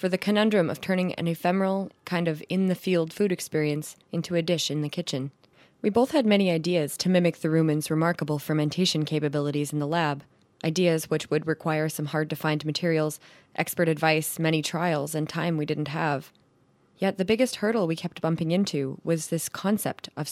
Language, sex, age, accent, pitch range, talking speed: English, female, 20-39, American, 155-175 Hz, 180 wpm